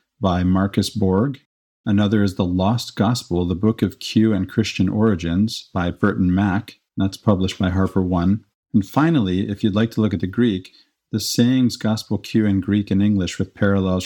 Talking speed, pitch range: 185 wpm, 95-110 Hz